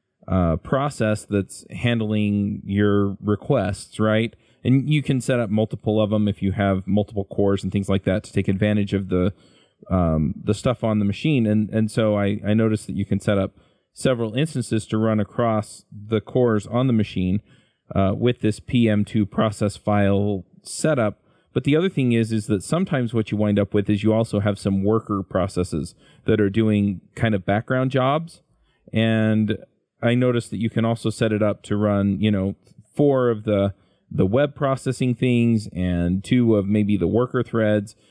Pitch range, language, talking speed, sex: 100-120 Hz, English, 185 wpm, male